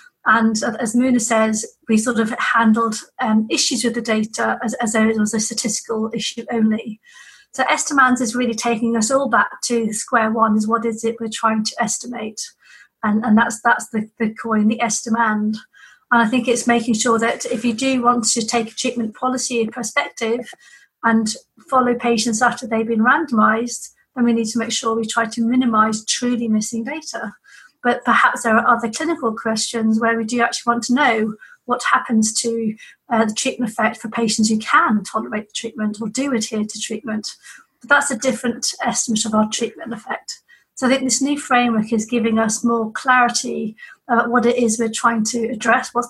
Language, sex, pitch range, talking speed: English, female, 225-245 Hz, 195 wpm